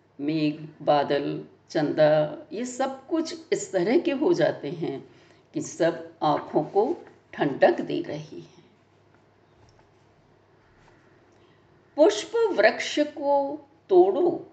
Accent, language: native, Hindi